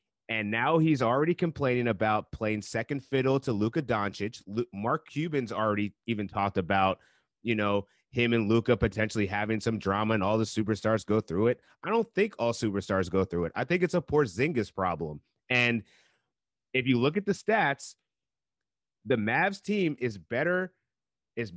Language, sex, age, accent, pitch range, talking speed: English, male, 30-49, American, 105-145 Hz, 175 wpm